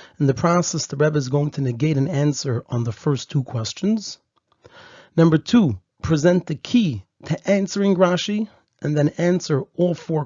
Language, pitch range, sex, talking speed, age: English, 140-180 Hz, male, 170 wpm, 40-59